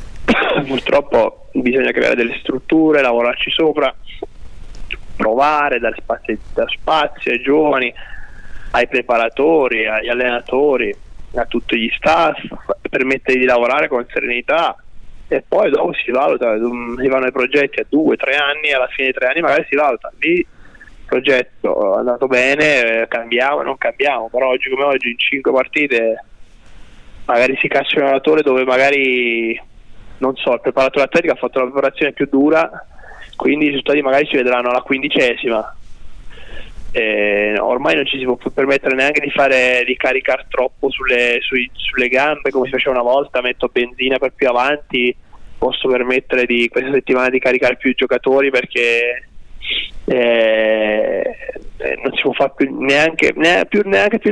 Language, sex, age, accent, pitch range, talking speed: Italian, male, 20-39, native, 120-145 Hz, 150 wpm